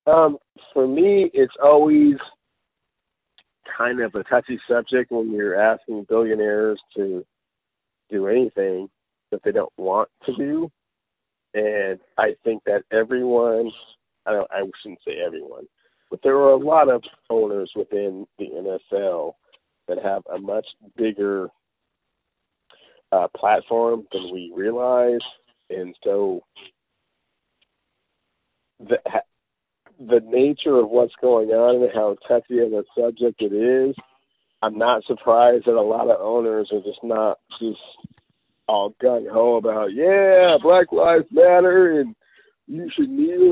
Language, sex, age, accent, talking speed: English, male, 40-59, American, 125 wpm